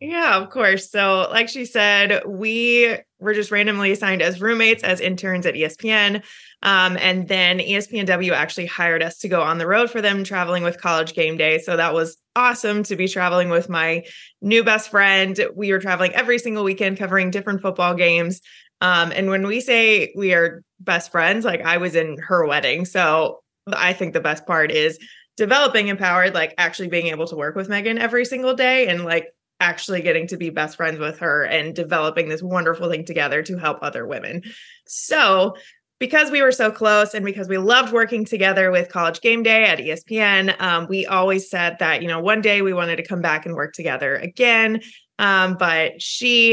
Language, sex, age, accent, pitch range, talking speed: English, female, 20-39, American, 170-215 Hz, 195 wpm